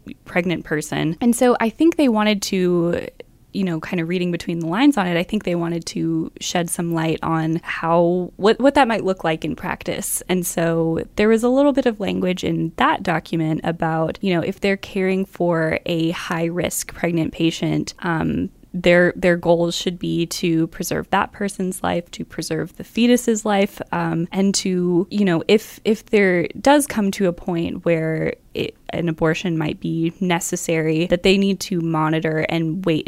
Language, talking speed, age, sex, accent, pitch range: English, 190 wpm, 10-29, female, American, 165-195 Hz